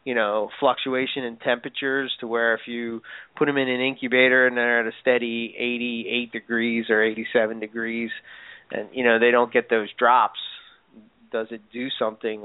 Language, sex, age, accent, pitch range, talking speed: English, male, 30-49, American, 115-130 Hz, 175 wpm